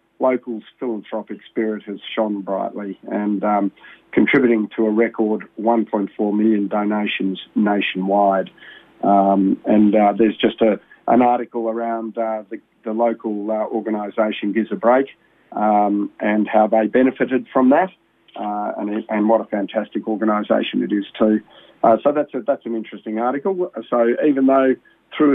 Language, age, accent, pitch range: English, 40-59, Australian, 105-120 Hz